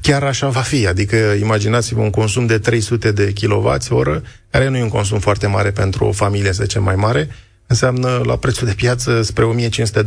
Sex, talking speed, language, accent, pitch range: male, 205 wpm, Romanian, native, 105-125 Hz